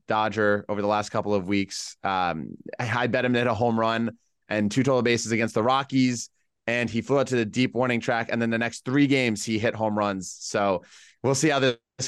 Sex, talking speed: male, 235 wpm